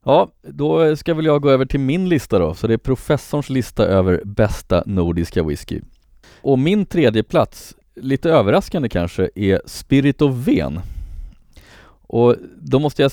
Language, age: Swedish, 30-49